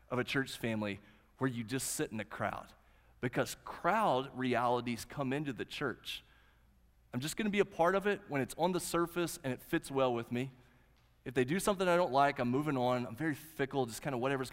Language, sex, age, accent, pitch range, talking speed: English, male, 30-49, American, 120-170 Hz, 225 wpm